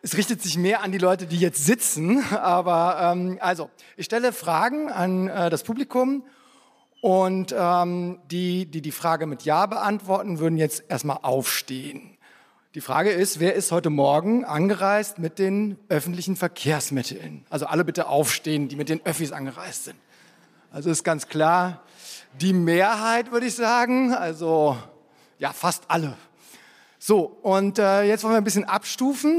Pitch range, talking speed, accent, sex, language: 155-215 Hz, 155 wpm, German, male, German